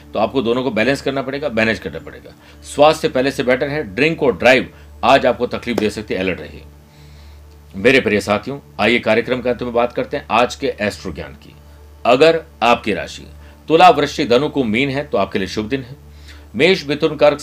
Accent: native